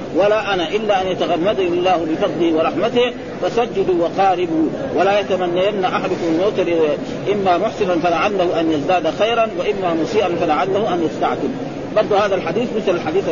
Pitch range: 180-230 Hz